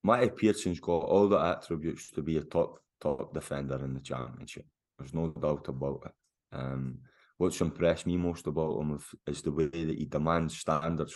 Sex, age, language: male, 20-39, English